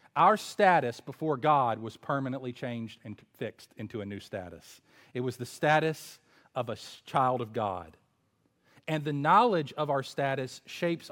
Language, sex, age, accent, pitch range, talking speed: English, male, 40-59, American, 110-145 Hz, 155 wpm